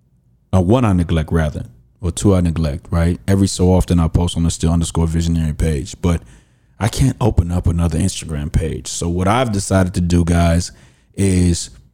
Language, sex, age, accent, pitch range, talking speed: English, male, 30-49, American, 80-95 Hz, 190 wpm